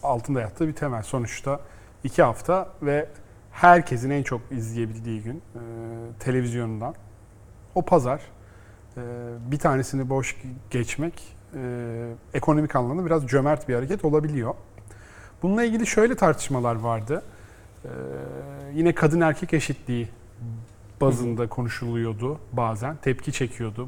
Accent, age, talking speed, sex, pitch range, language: native, 40-59, 105 wpm, male, 115-155 Hz, Turkish